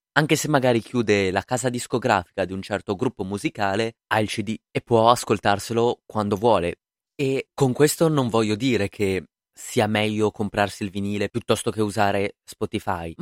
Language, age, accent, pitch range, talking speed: Italian, 20-39, native, 100-130 Hz, 165 wpm